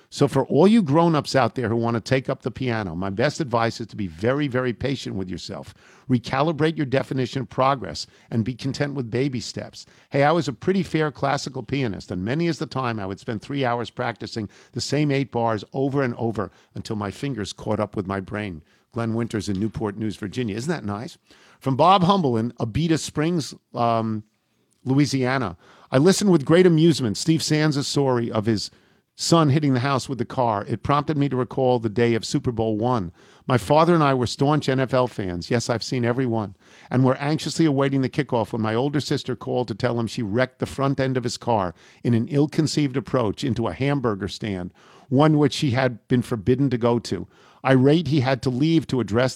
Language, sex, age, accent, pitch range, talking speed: English, male, 50-69, American, 115-140 Hz, 215 wpm